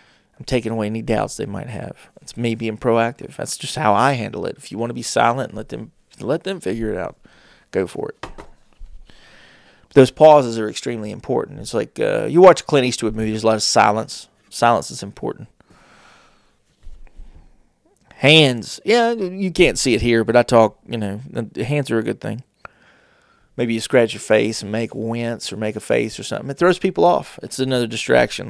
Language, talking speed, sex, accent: English, 195 wpm, male, American